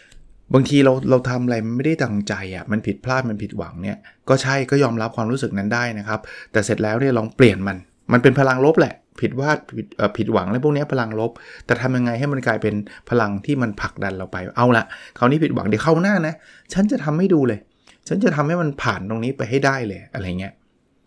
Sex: male